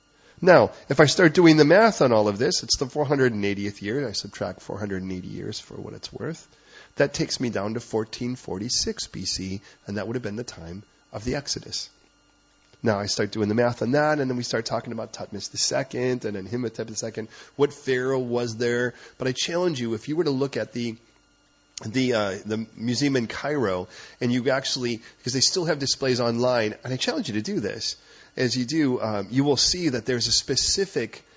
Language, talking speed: English, 205 wpm